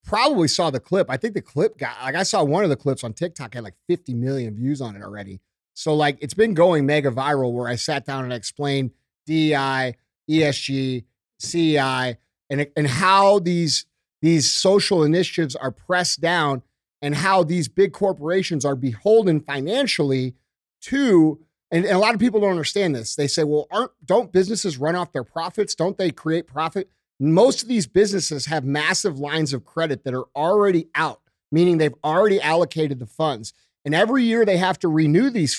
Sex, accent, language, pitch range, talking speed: male, American, English, 140-180 Hz, 190 wpm